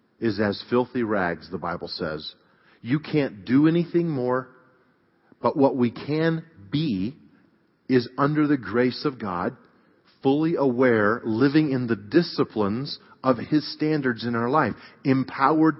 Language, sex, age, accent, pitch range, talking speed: English, male, 40-59, American, 115-150 Hz, 135 wpm